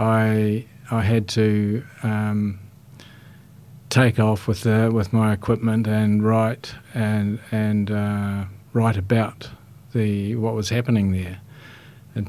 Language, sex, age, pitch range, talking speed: English, male, 50-69, 100-120 Hz, 120 wpm